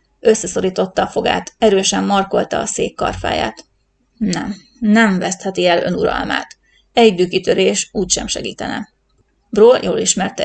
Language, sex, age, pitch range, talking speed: Hungarian, female, 30-49, 195-220 Hz, 120 wpm